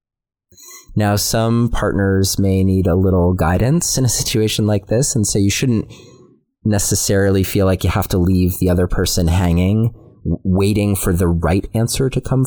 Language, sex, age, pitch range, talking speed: English, male, 30-49, 95-120 Hz, 170 wpm